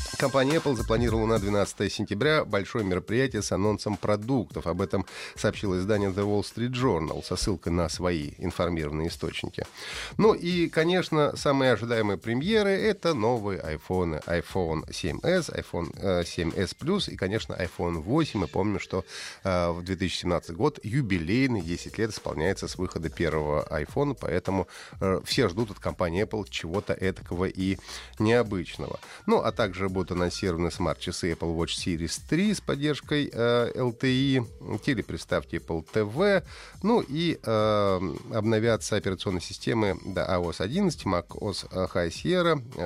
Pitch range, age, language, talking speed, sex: 90-130 Hz, 30-49, Russian, 140 wpm, male